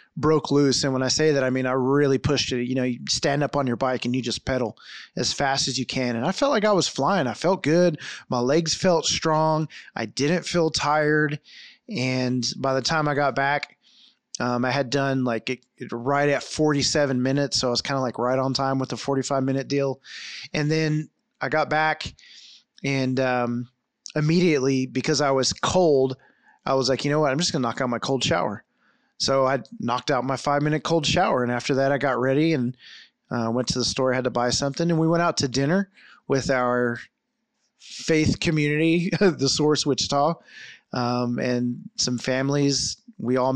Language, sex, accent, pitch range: English, male, American, 130-155 Hz